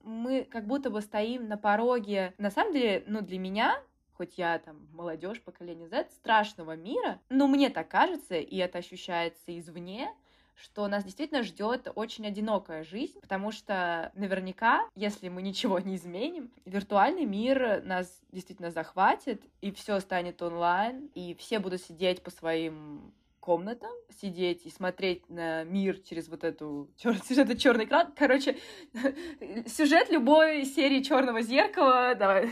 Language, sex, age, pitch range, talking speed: Russian, female, 20-39, 180-260 Hz, 150 wpm